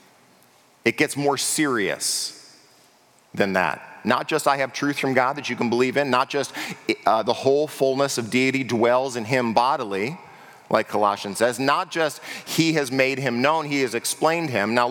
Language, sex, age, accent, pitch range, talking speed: English, male, 40-59, American, 130-165 Hz, 180 wpm